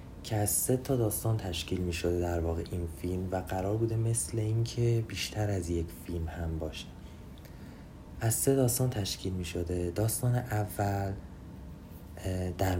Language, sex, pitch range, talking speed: Persian, male, 85-110 Hz, 150 wpm